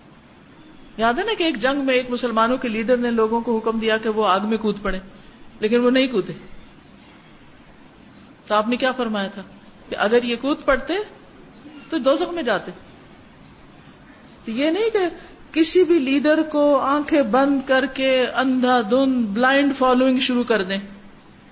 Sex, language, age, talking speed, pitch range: female, Urdu, 50-69, 150 wpm, 215-265 Hz